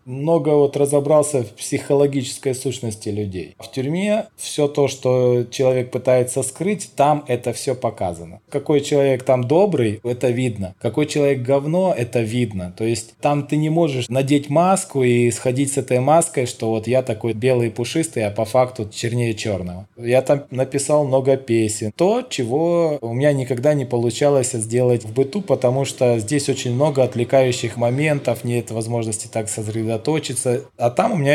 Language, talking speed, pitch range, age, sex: Russian, 165 wpm, 115-140 Hz, 20-39, male